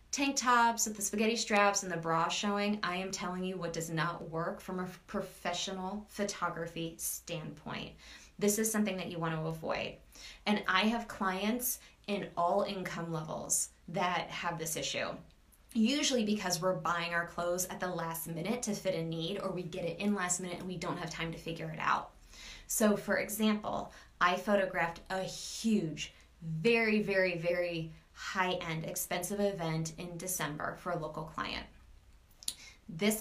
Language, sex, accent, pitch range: English, female, American, 170-205 Hz